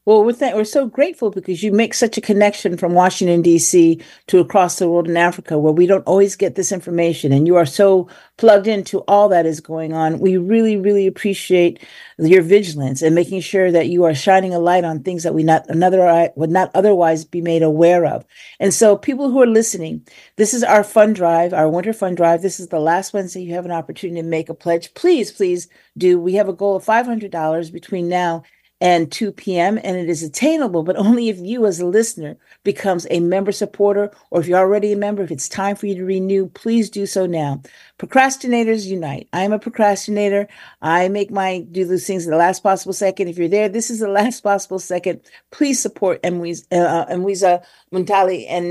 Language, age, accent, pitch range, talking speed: English, 50-69, American, 175-210 Hz, 215 wpm